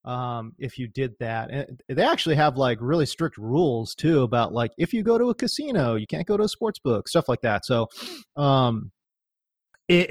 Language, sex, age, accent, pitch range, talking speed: English, male, 30-49, American, 125-165 Hz, 210 wpm